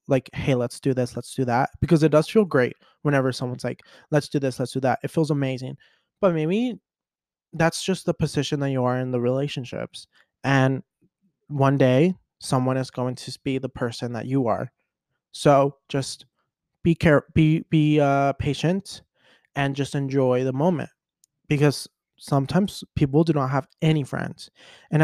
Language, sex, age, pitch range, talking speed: English, male, 20-39, 130-160 Hz, 175 wpm